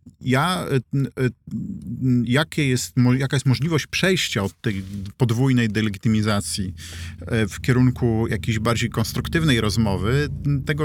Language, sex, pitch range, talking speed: Polish, male, 105-125 Hz, 100 wpm